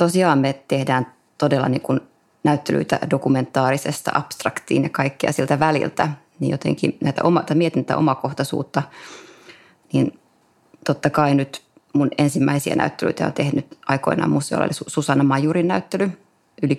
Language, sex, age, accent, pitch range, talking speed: Finnish, female, 20-39, native, 140-160 Hz, 120 wpm